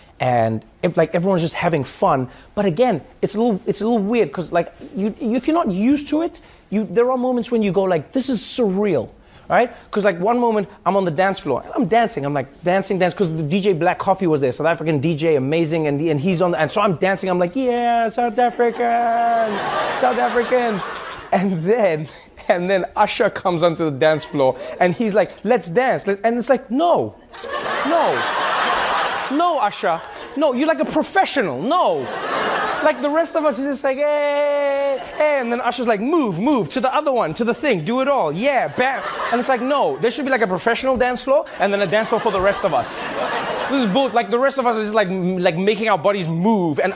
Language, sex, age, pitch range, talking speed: English, male, 30-49, 185-250 Hz, 230 wpm